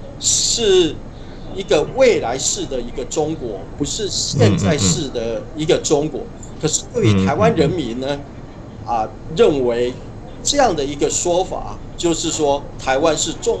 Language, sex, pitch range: Chinese, male, 125-165 Hz